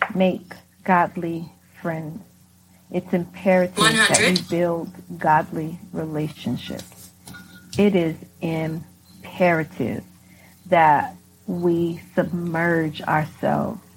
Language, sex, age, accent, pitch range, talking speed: English, female, 40-59, American, 155-195 Hz, 75 wpm